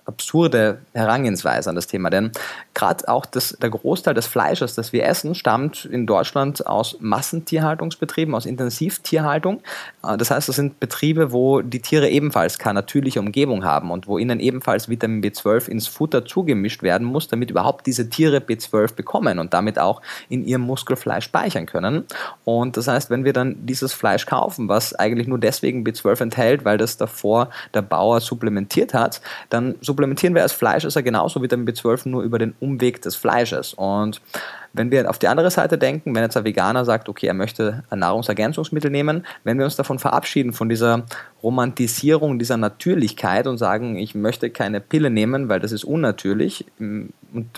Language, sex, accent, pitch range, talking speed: German, male, German, 110-140 Hz, 180 wpm